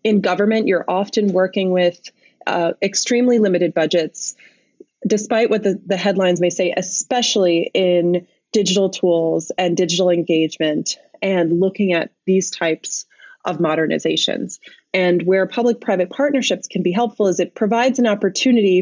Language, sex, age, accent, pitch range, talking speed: English, female, 20-39, American, 175-215 Hz, 140 wpm